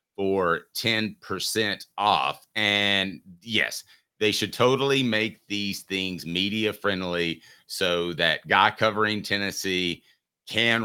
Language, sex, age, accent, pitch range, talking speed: English, male, 40-59, American, 85-110 Hz, 100 wpm